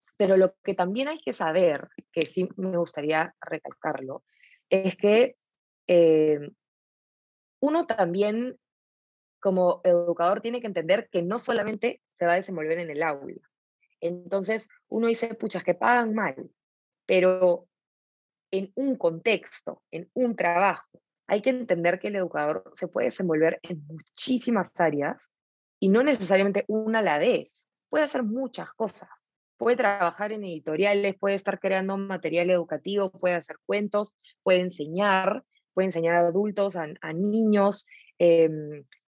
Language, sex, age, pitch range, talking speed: Spanish, female, 20-39, 175-220 Hz, 140 wpm